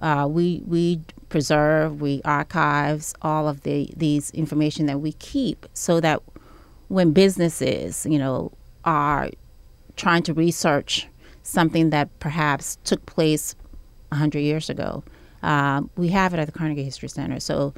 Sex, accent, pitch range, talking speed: female, American, 140-160 Hz, 140 wpm